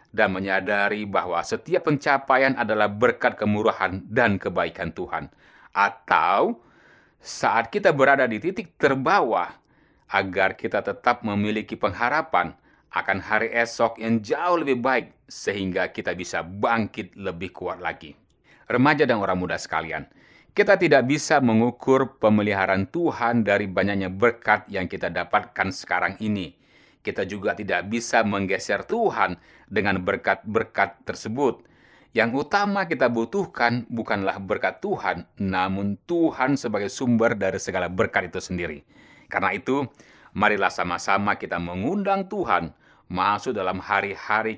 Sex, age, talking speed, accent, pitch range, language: male, 30-49, 120 wpm, native, 95-120 Hz, Indonesian